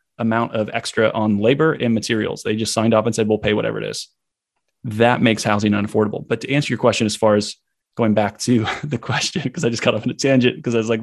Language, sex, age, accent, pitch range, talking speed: English, male, 20-39, American, 110-125 Hz, 255 wpm